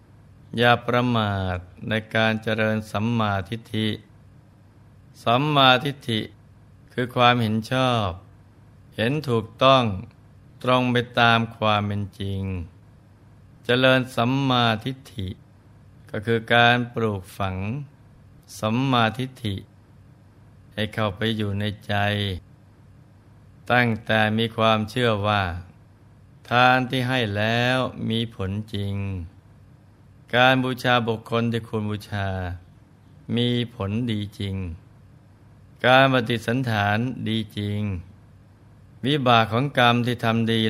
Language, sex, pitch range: Thai, male, 105-120 Hz